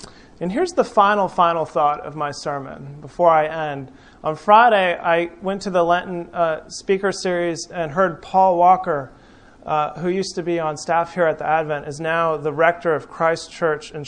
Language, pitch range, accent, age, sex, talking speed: English, 165-210 Hz, American, 30-49, male, 190 wpm